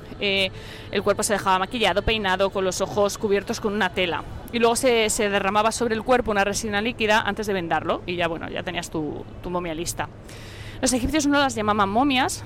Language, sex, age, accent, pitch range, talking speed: Spanish, female, 20-39, Spanish, 190-235 Hz, 205 wpm